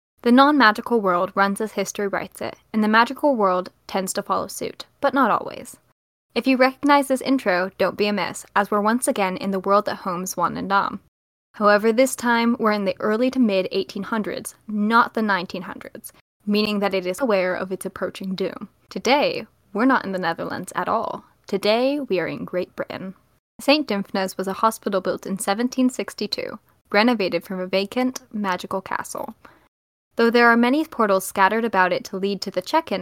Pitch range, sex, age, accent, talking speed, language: 190-245 Hz, female, 10-29, American, 185 wpm, English